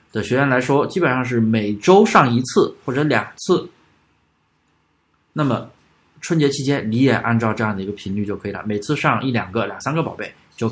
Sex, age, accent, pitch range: male, 20-39, native, 110-150 Hz